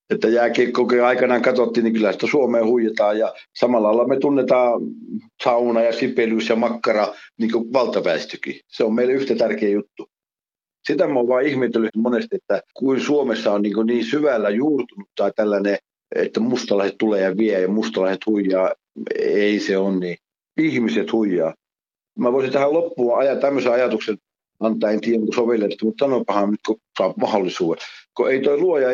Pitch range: 105-140 Hz